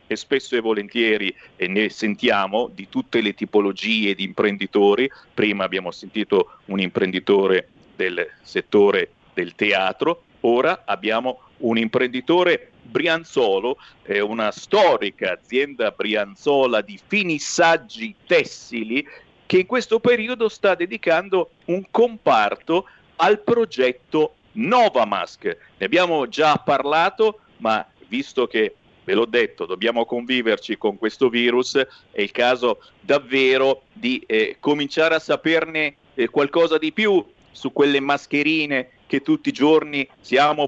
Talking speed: 120 wpm